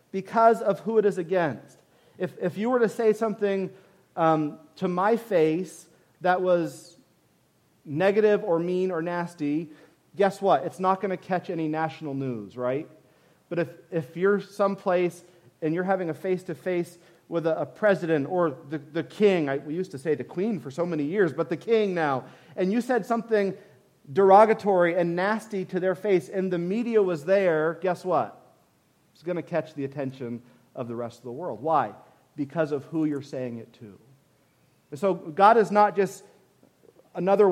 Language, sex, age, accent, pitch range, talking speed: English, male, 40-59, American, 145-185 Hz, 175 wpm